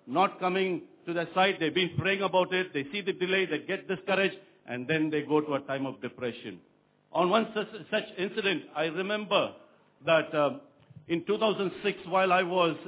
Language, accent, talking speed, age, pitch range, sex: English, Indian, 180 wpm, 60-79, 150-190 Hz, male